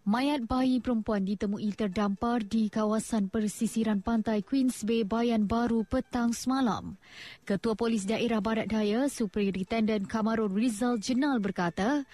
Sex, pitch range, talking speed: female, 210-245 Hz, 120 wpm